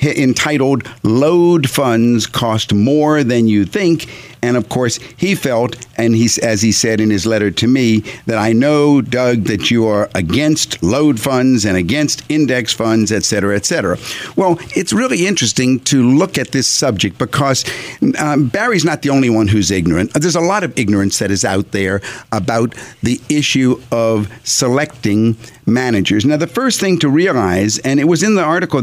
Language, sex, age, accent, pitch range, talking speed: English, male, 50-69, American, 110-150 Hz, 175 wpm